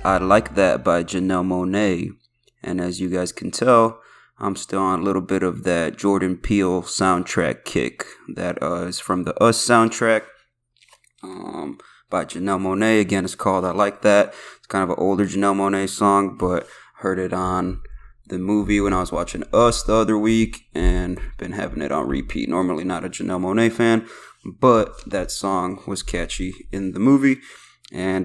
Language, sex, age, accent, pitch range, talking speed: English, male, 20-39, American, 95-105 Hz, 180 wpm